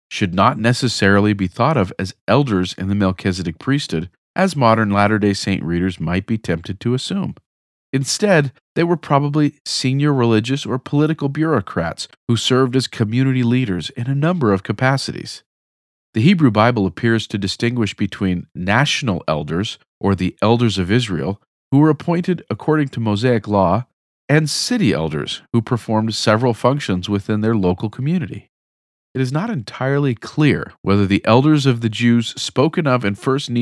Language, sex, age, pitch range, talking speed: English, male, 40-59, 100-140 Hz, 155 wpm